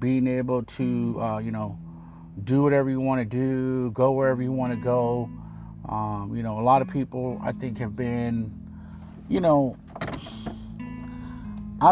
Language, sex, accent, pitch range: English, male, American, 85-125 Hz